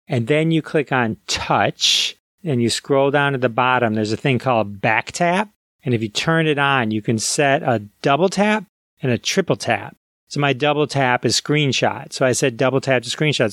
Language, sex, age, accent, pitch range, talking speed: English, male, 30-49, American, 120-160 Hz, 215 wpm